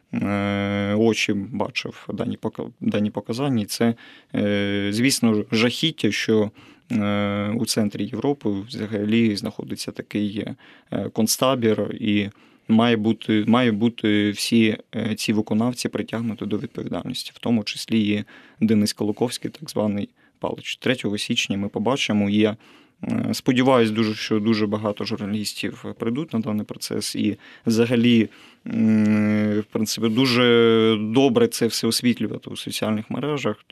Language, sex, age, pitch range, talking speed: Ukrainian, male, 30-49, 105-115 Hz, 110 wpm